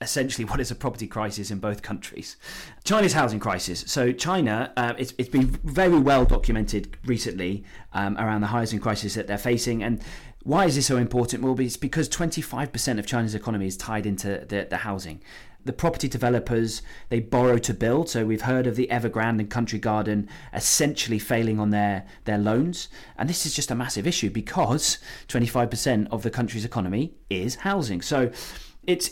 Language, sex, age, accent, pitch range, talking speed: English, male, 30-49, British, 105-130 Hz, 180 wpm